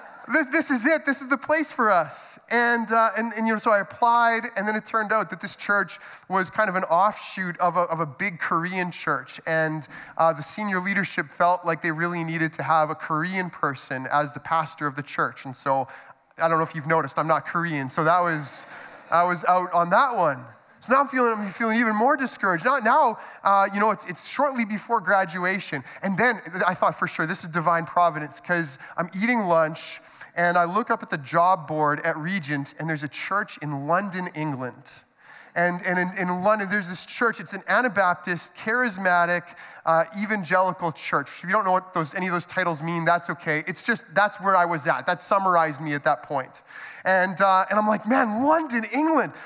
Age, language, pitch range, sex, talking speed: 20-39, English, 170-235 Hz, male, 215 wpm